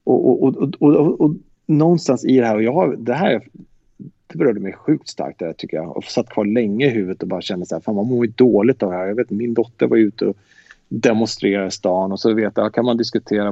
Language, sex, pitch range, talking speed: English, male, 105-135 Hz, 255 wpm